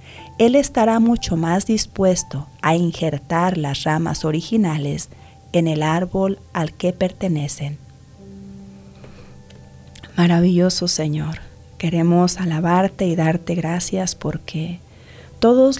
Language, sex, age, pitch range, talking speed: English, female, 40-59, 155-180 Hz, 95 wpm